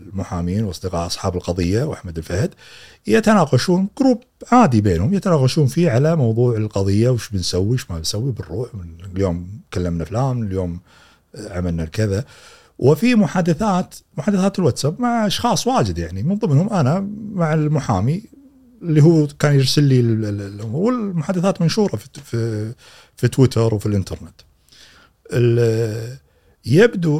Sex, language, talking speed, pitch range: male, Arabic, 120 wpm, 95-145 Hz